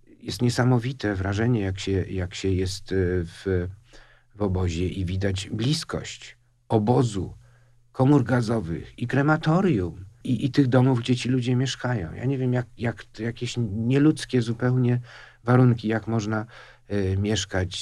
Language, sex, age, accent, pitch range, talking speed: Polish, male, 50-69, native, 95-120 Hz, 140 wpm